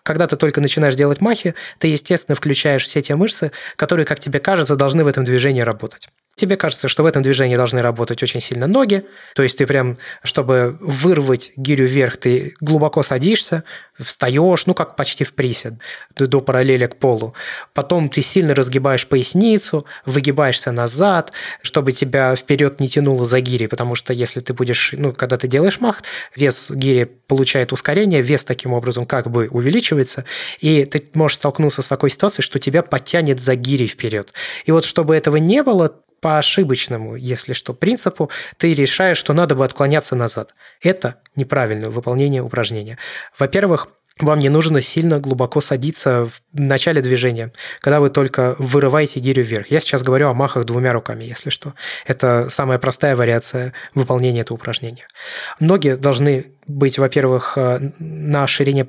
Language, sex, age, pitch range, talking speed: Russian, male, 20-39, 130-155 Hz, 165 wpm